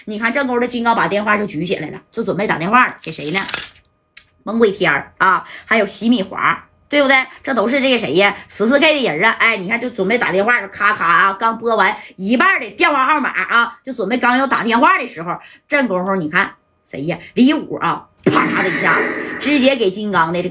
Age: 20-39